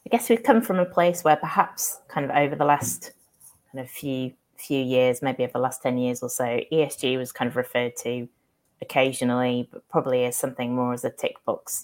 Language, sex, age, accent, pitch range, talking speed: English, female, 30-49, British, 120-135 Hz, 220 wpm